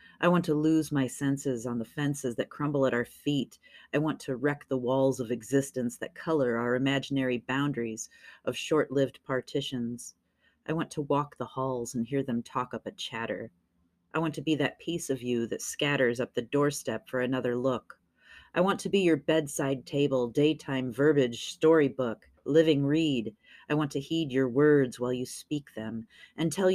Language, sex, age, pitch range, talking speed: English, female, 30-49, 125-150 Hz, 185 wpm